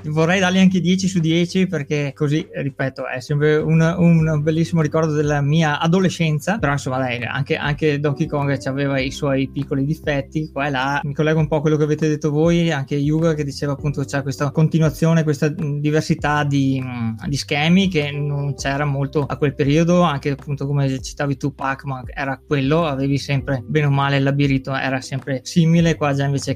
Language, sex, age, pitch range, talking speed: Italian, male, 20-39, 140-160 Hz, 190 wpm